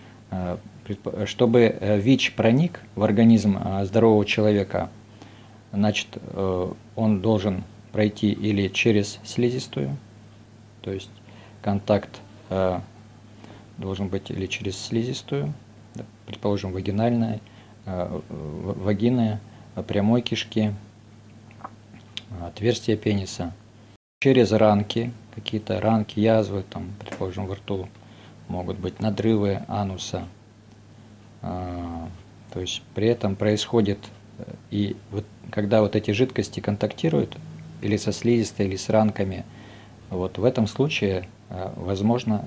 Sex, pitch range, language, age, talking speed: male, 100-110 Hz, Russian, 40-59, 90 wpm